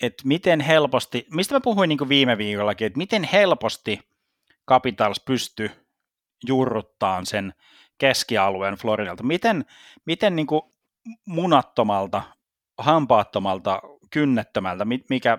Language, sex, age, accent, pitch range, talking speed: Finnish, male, 30-49, native, 110-165 Hz, 95 wpm